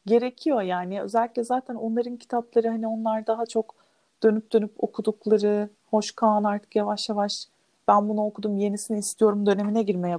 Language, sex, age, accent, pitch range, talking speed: Turkish, female, 40-59, native, 200-235 Hz, 145 wpm